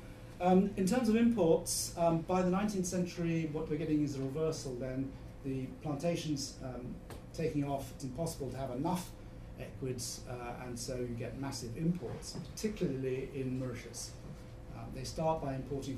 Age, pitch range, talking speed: 40-59, 120-145 Hz, 160 wpm